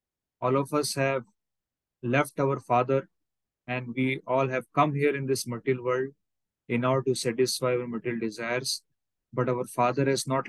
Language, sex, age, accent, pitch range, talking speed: English, male, 30-49, Indian, 125-155 Hz, 165 wpm